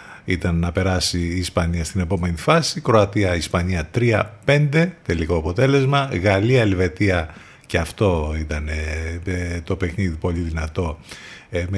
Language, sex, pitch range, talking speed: Greek, male, 85-110 Hz, 105 wpm